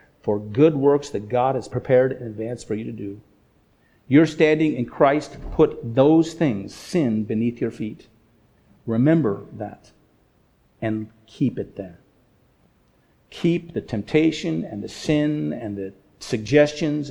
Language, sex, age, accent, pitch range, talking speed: English, male, 50-69, American, 115-155 Hz, 135 wpm